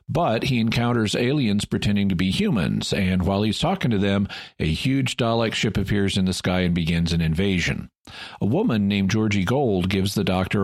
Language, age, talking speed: English, 50-69, 190 wpm